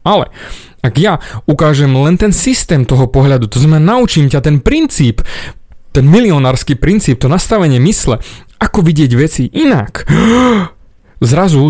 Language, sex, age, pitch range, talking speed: Slovak, male, 30-49, 130-180 Hz, 135 wpm